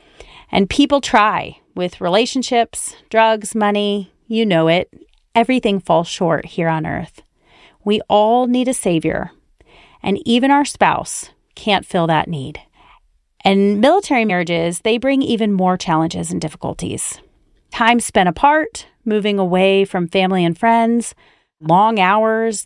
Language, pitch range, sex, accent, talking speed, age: English, 175-225 Hz, female, American, 130 wpm, 30-49